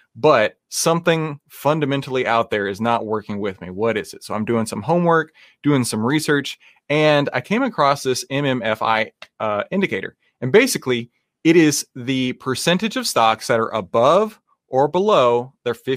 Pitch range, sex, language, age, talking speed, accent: 120-165 Hz, male, English, 30-49, 160 wpm, American